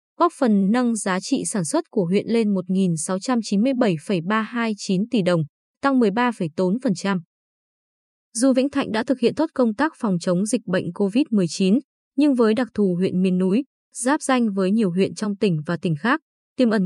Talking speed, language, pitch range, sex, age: 170 wpm, Vietnamese, 190-255 Hz, female, 20-39